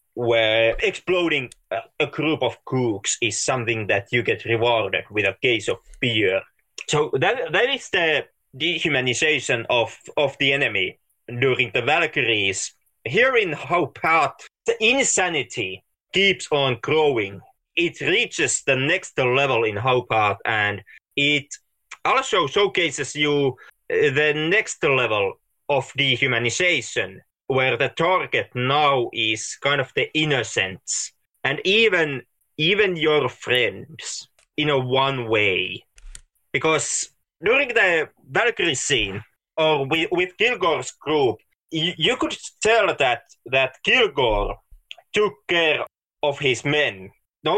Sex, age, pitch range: male, 30-49, 125-170 Hz